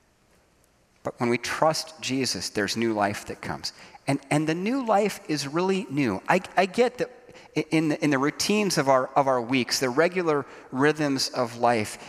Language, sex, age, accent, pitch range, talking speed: English, male, 40-59, American, 140-215 Hz, 185 wpm